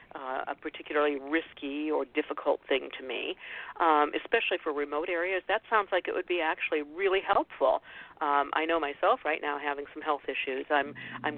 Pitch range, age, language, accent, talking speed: 145-190 Hz, 50-69, English, American, 185 wpm